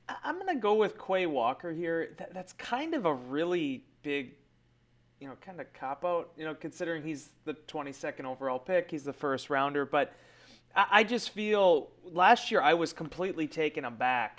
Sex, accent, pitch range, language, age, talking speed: male, American, 140-180 Hz, English, 30-49, 190 wpm